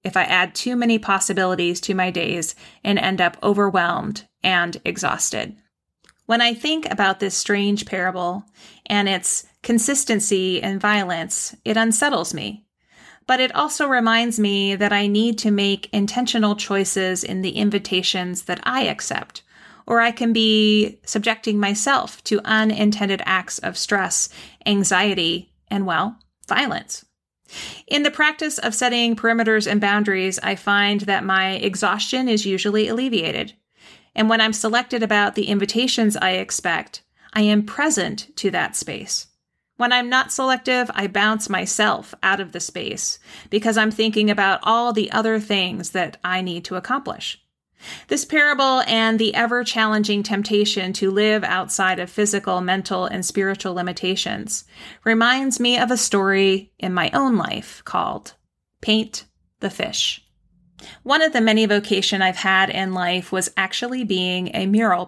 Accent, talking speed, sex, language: American, 150 wpm, female, English